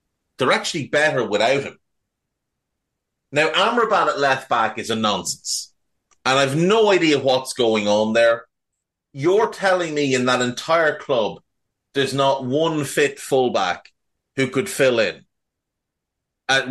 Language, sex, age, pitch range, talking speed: English, male, 30-49, 110-150 Hz, 135 wpm